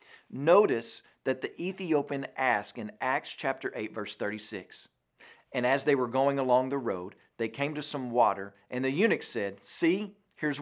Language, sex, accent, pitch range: English, male, American, 125-180 Hz